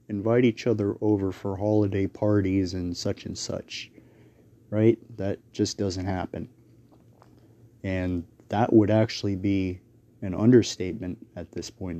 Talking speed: 130 wpm